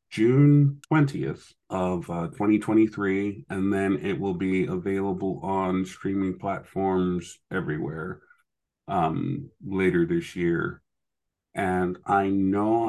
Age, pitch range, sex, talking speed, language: 40-59, 90-100 Hz, male, 100 wpm, English